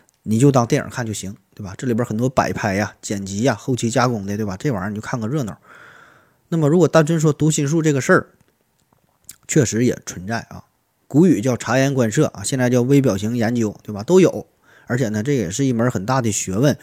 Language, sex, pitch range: Chinese, male, 105-135 Hz